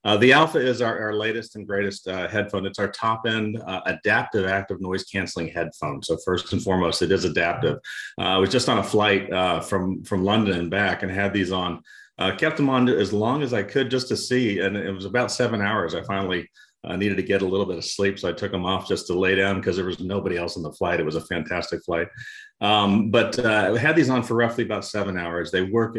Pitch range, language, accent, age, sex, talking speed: 95-110 Hz, English, American, 40-59, male, 240 wpm